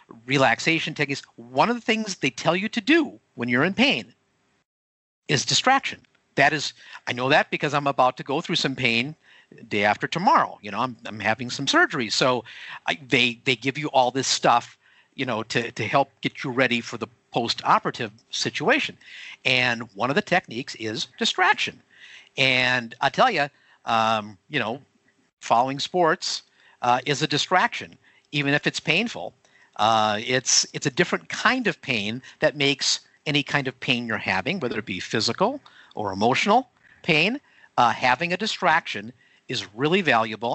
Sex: male